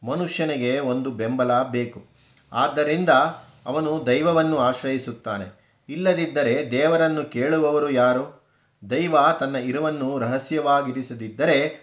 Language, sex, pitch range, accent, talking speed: Kannada, male, 125-150 Hz, native, 80 wpm